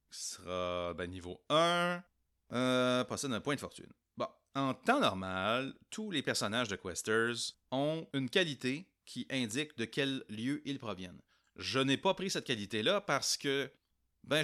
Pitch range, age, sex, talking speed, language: 100-140 Hz, 30-49, male, 160 wpm, French